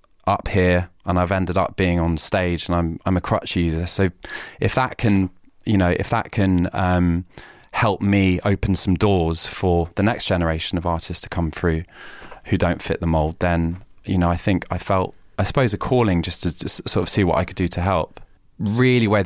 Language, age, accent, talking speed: English, 20-39, British, 215 wpm